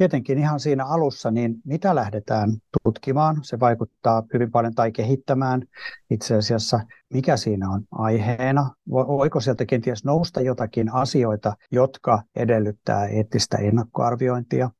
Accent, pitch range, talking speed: native, 110-130 Hz, 120 wpm